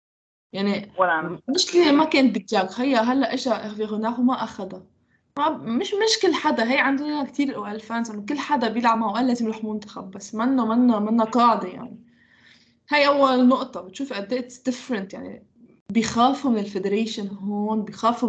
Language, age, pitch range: Arabic, 20-39, 205-250 Hz